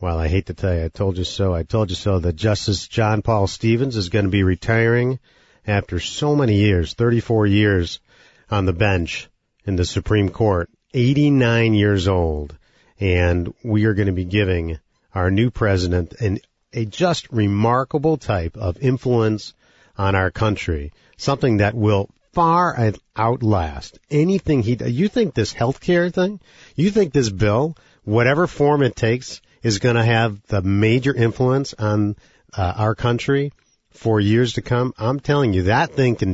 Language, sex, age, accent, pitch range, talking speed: English, male, 50-69, American, 95-125 Hz, 165 wpm